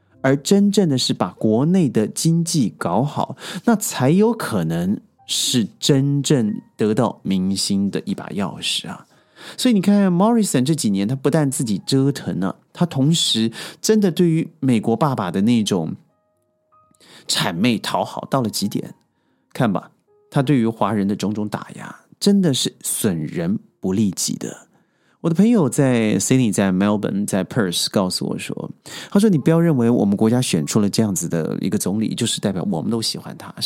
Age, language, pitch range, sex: 30-49, Chinese, 115-185 Hz, male